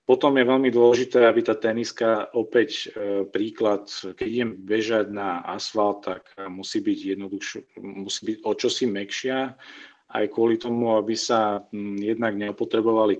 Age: 40-59